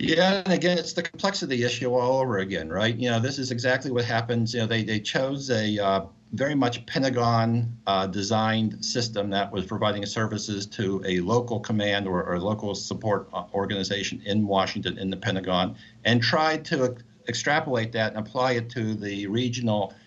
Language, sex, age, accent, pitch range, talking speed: English, male, 50-69, American, 110-130 Hz, 175 wpm